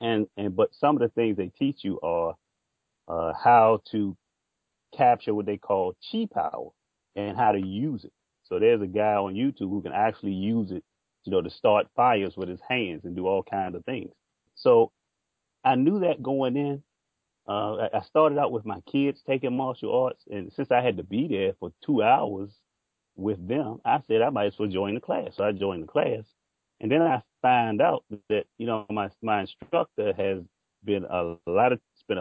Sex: male